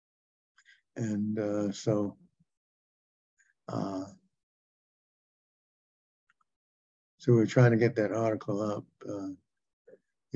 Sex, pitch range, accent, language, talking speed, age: male, 110-130 Hz, American, English, 80 wpm, 60-79